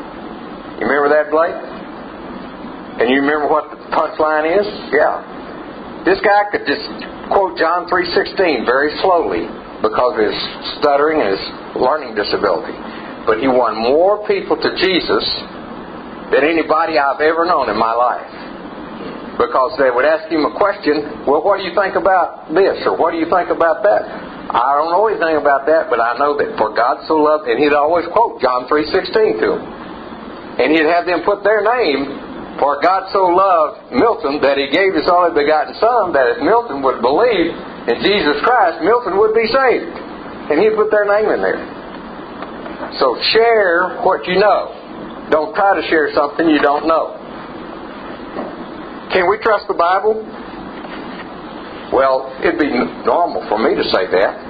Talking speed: 165 wpm